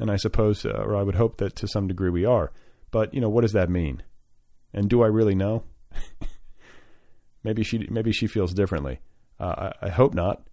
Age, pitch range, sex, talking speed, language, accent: 40-59, 90-115 Hz, male, 210 wpm, English, American